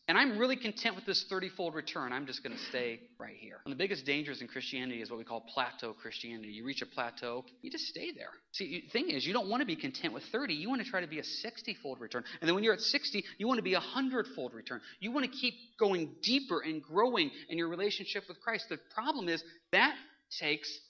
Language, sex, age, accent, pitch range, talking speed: English, male, 30-49, American, 155-230 Hz, 250 wpm